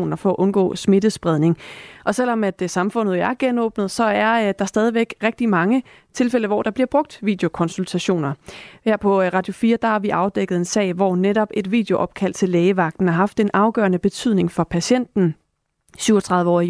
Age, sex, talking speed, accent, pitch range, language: 30-49, female, 175 wpm, native, 185-220 Hz, Danish